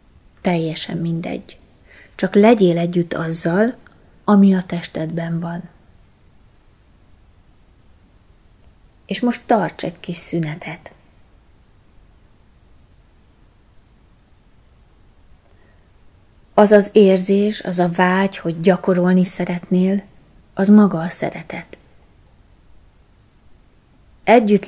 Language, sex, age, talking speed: Hungarian, female, 30-49, 75 wpm